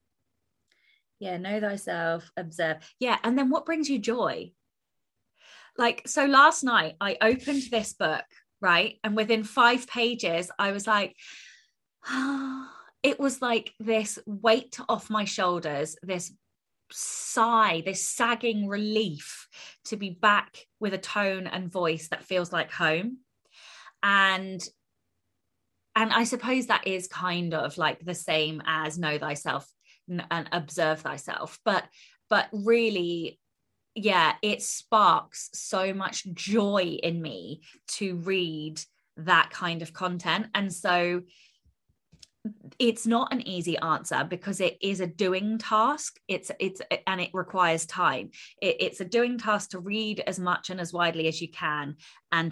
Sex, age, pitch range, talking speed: female, 20-39, 165-220 Hz, 135 wpm